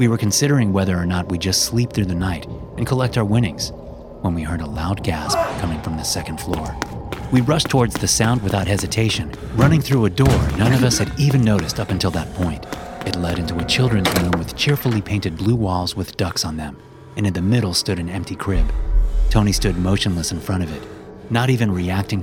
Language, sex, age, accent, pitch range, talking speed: English, male, 30-49, American, 85-120 Hz, 220 wpm